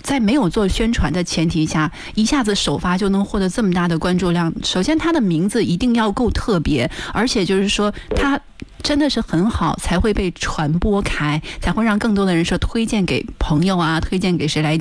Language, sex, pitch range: Chinese, female, 160-220 Hz